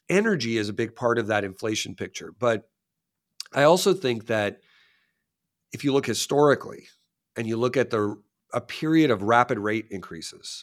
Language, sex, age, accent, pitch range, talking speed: English, male, 40-59, American, 105-135 Hz, 165 wpm